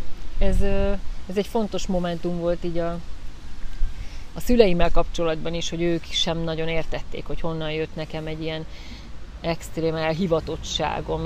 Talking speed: 135 wpm